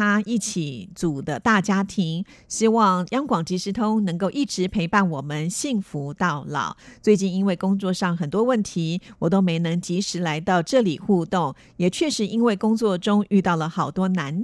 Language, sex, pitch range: Chinese, female, 165-210 Hz